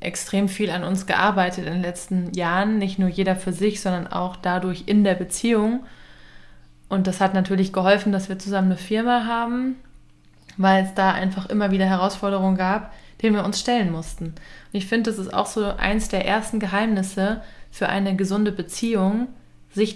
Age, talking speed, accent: 20-39, 180 wpm, German